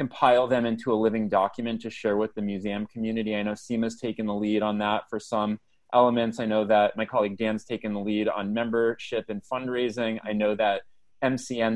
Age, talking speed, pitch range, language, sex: 30-49, 205 wpm, 105-120 Hz, English, male